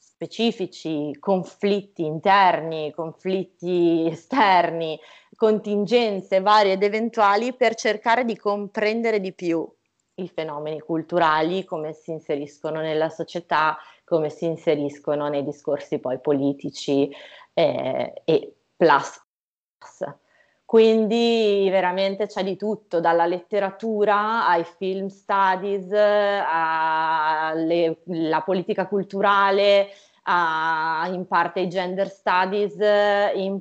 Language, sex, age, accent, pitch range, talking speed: Italian, female, 20-39, native, 160-205 Hz, 95 wpm